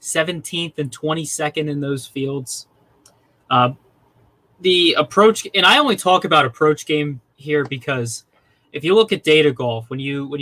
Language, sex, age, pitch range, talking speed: English, male, 20-39, 125-150 Hz, 155 wpm